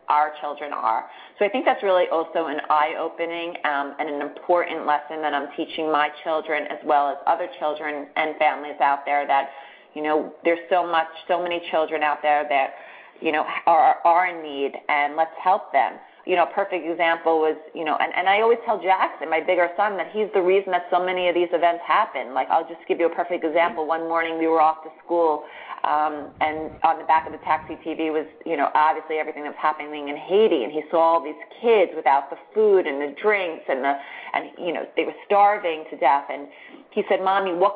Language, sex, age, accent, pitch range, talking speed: English, female, 30-49, American, 155-185 Hz, 225 wpm